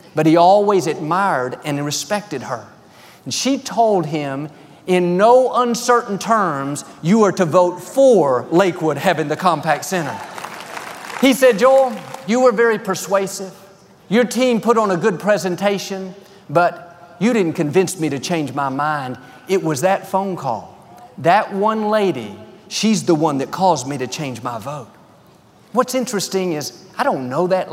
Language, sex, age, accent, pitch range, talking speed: English, male, 40-59, American, 165-220 Hz, 160 wpm